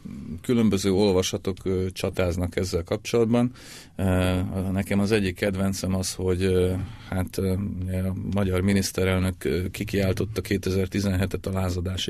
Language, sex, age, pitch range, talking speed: Hungarian, male, 40-59, 95-105 Hz, 95 wpm